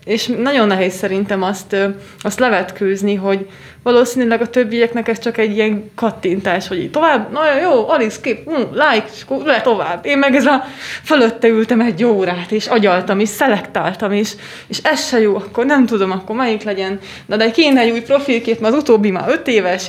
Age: 20-39